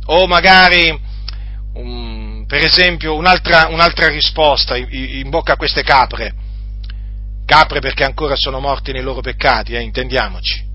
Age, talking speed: 40-59, 125 wpm